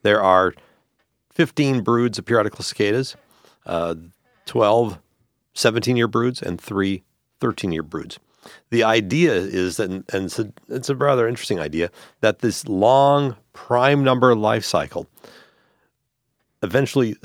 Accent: American